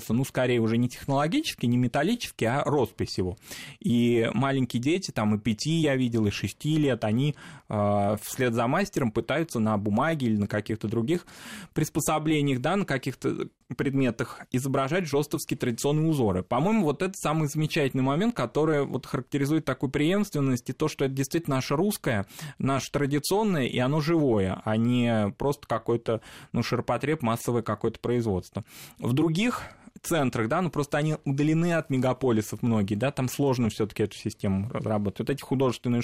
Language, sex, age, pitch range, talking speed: Russian, male, 20-39, 110-145 Hz, 160 wpm